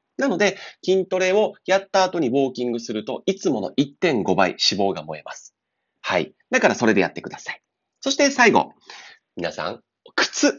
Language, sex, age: Japanese, male, 30-49